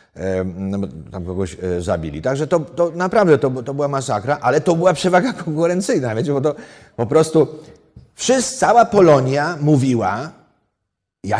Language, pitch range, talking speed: Polish, 105-155 Hz, 130 wpm